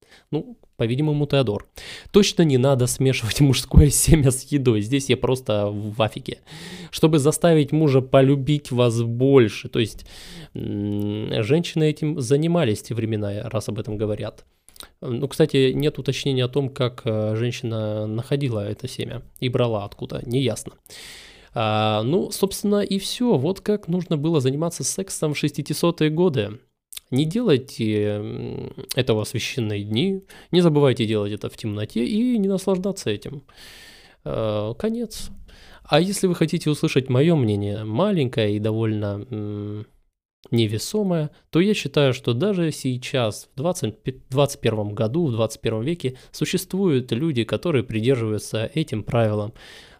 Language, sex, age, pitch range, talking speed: Russian, male, 20-39, 110-160 Hz, 130 wpm